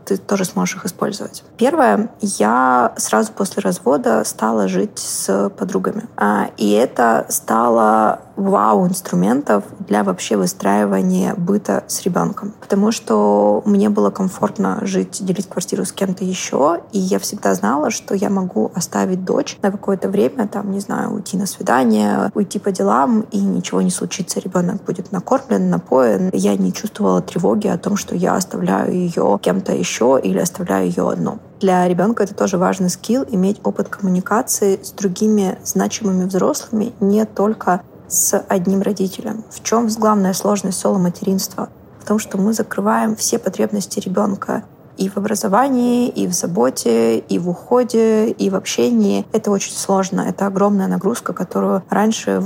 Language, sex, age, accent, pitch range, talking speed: Russian, female, 20-39, native, 180-210 Hz, 150 wpm